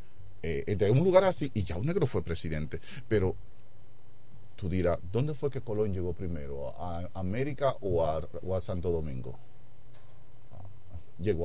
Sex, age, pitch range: male, 40-59, 95-125 Hz